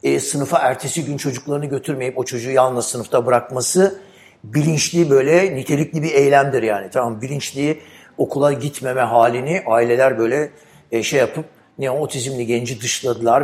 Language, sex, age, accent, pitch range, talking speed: English, male, 60-79, Turkish, 125-155 Hz, 140 wpm